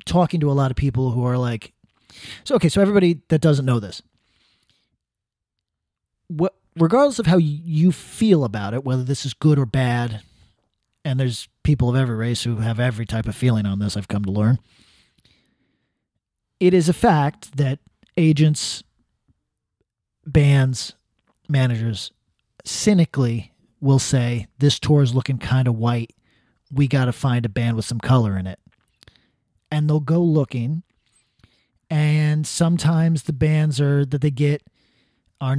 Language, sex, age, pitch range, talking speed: English, male, 40-59, 120-160 Hz, 155 wpm